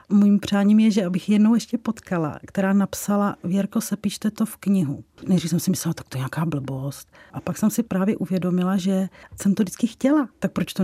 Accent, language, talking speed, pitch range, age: native, Czech, 215 wpm, 185-210 Hz, 40-59